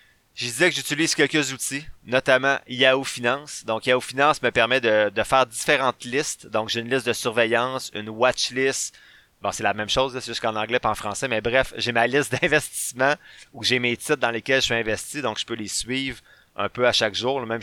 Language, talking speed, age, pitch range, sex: French, 230 wpm, 30-49, 110-130 Hz, male